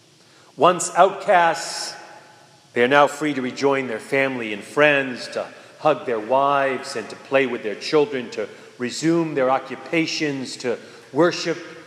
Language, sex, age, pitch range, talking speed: English, male, 40-59, 130-170 Hz, 140 wpm